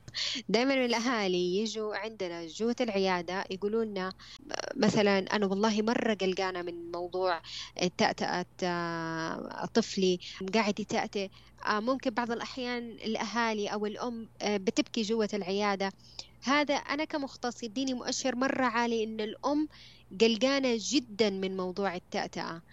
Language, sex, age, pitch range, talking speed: Arabic, female, 20-39, 200-250 Hz, 110 wpm